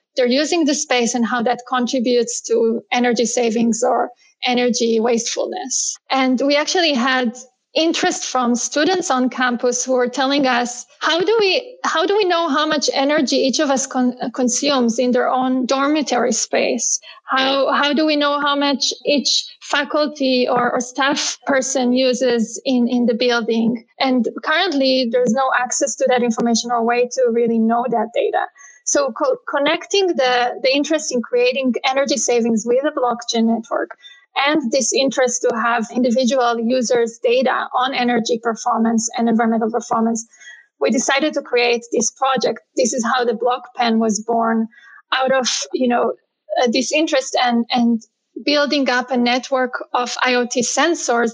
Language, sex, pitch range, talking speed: English, female, 240-280 Hz, 160 wpm